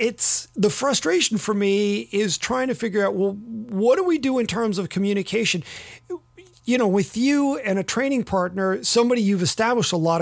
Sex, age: male, 40-59